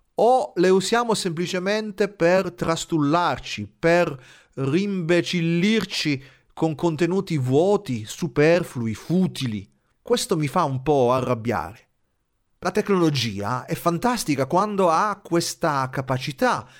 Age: 40-59